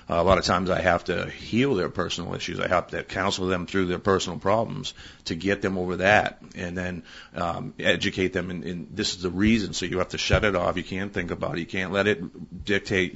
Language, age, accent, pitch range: English, 40-59, American, 90-95 Hz